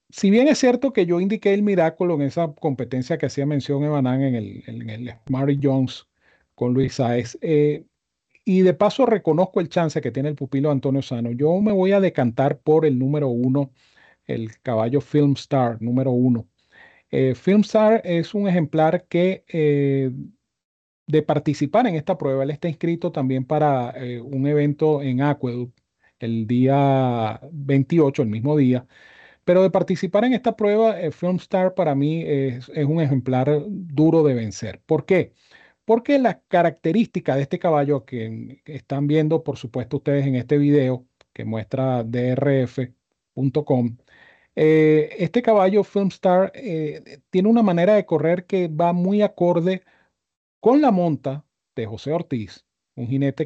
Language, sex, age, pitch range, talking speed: Spanish, male, 40-59, 130-175 Hz, 155 wpm